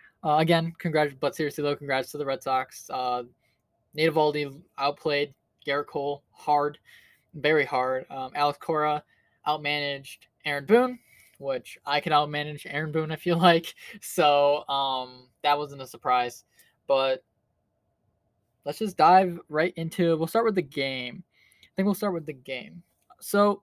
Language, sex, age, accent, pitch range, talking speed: English, male, 10-29, American, 130-165 Hz, 150 wpm